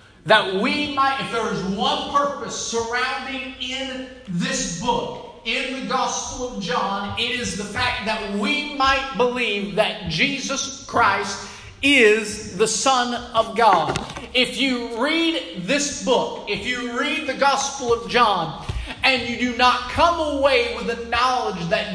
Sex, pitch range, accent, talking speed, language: male, 205-265 Hz, American, 150 wpm, English